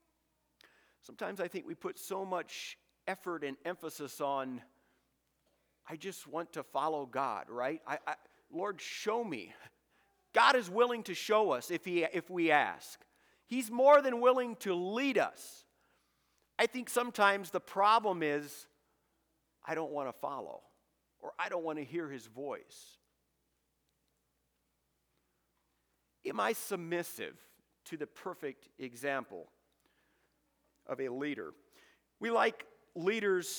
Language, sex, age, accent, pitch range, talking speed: English, male, 50-69, American, 140-190 Hz, 125 wpm